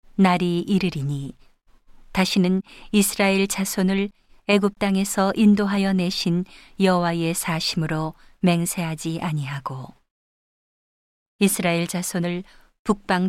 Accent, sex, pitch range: native, female, 170-200 Hz